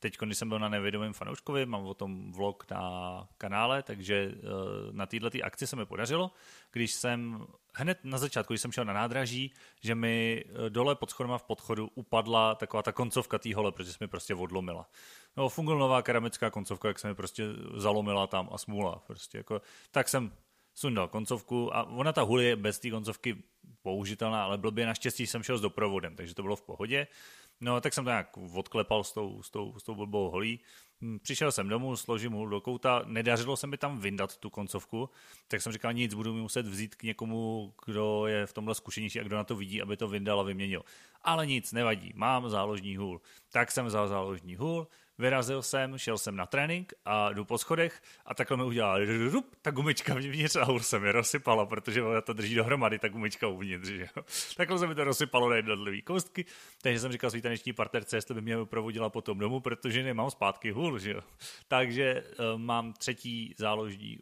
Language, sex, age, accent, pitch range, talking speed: Czech, male, 30-49, native, 105-125 Hz, 195 wpm